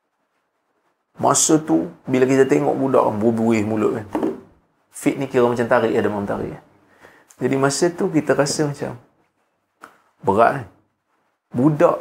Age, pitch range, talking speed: 30-49, 130-160 Hz, 140 wpm